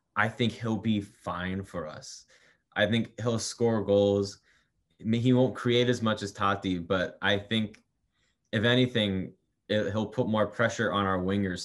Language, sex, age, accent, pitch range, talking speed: English, male, 20-39, American, 95-110 Hz, 160 wpm